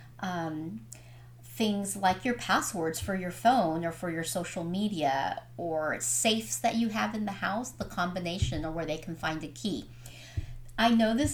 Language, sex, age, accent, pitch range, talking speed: English, female, 40-59, American, 170-220 Hz, 175 wpm